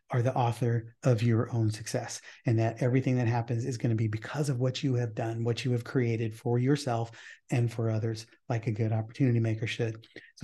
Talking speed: 220 wpm